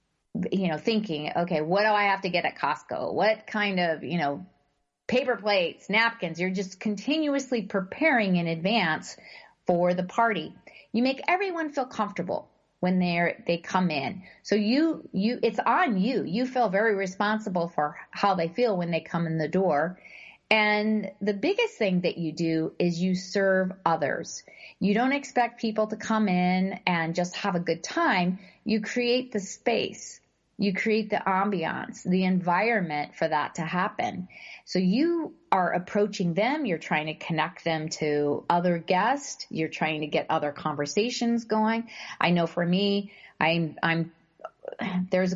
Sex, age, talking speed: female, 40-59, 165 wpm